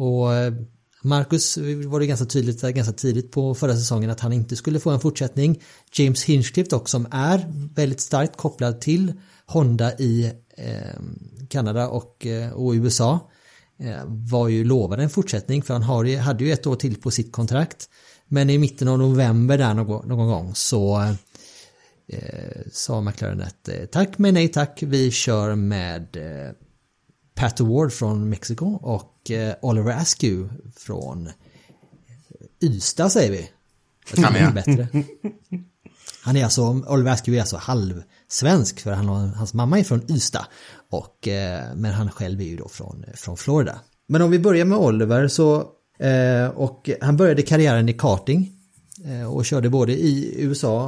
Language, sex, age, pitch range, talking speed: Swedish, male, 30-49, 115-145 Hz, 160 wpm